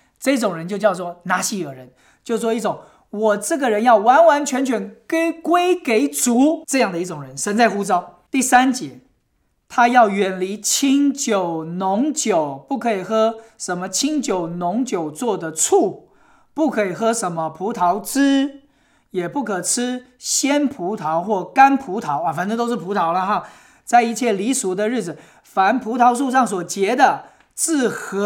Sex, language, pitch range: male, English, 195-275 Hz